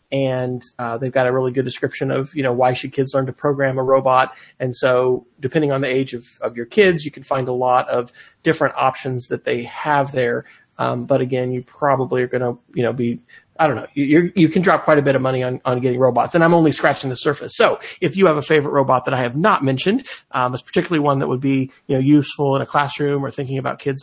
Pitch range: 130-160 Hz